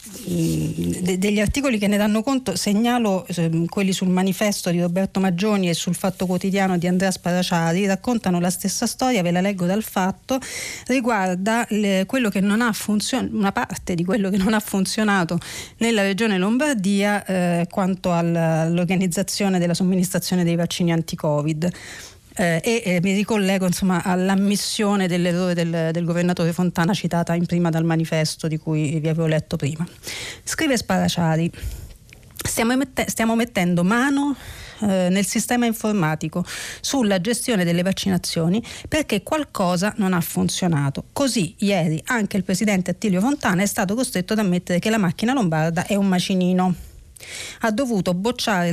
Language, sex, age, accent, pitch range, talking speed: Italian, female, 40-59, native, 175-215 Hz, 145 wpm